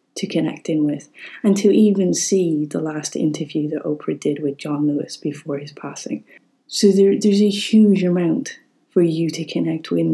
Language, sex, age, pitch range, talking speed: English, female, 30-49, 155-185 Hz, 180 wpm